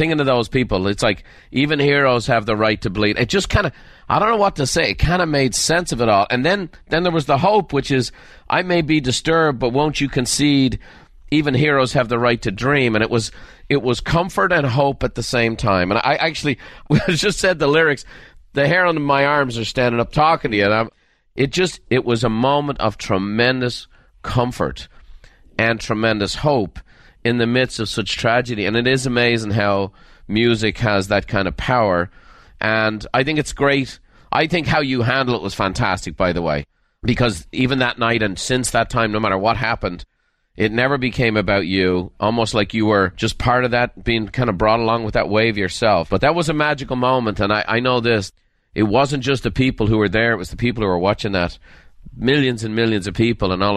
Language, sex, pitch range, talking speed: English, male, 105-140 Hz, 220 wpm